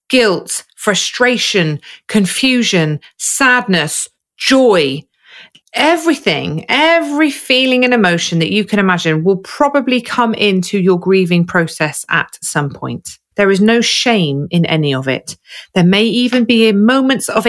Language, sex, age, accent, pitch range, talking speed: English, female, 40-59, British, 165-230 Hz, 130 wpm